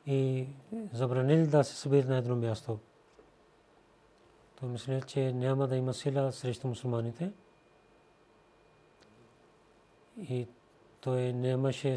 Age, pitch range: 40-59, 125-140 Hz